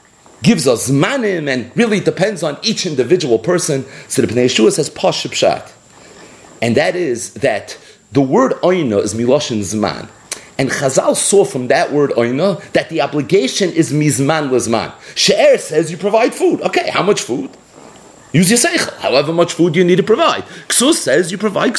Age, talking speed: 40-59, 170 wpm